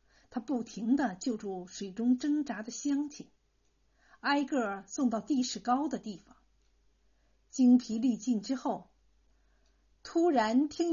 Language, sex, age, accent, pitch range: Chinese, female, 50-69, native, 225-295 Hz